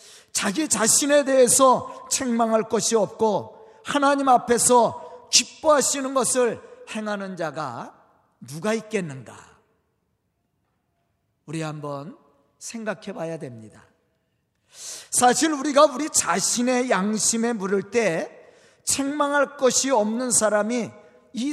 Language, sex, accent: Korean, male, native